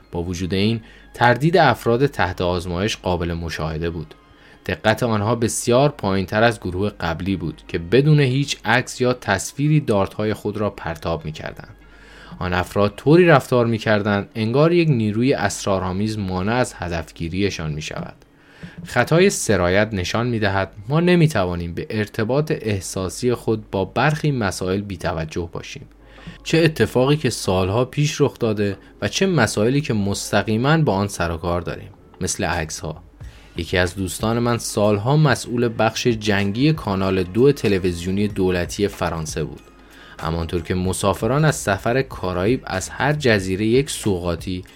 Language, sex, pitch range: Persian, male, 90-125 Hz